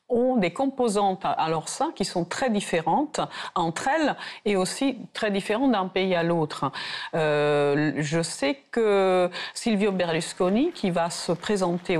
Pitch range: 160-205 Hz